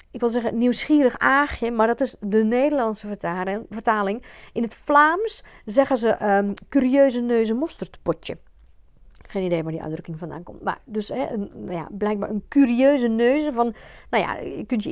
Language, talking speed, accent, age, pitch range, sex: Dutch, 170 wpm, Dutch, 40-59, 210-290 Hz, female